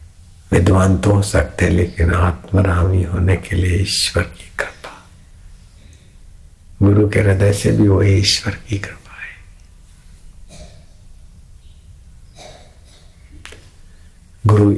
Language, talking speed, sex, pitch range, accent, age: Hindi, 95 wpm, male, 85-95 Hz, native, 60-79